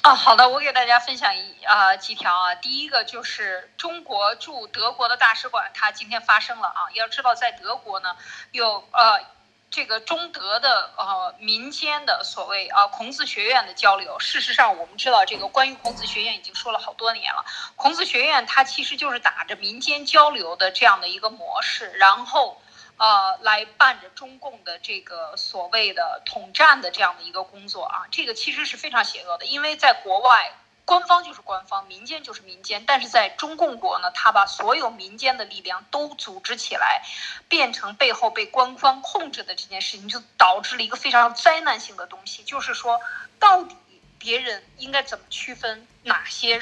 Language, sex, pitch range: Chinese, female, 205-310 Hz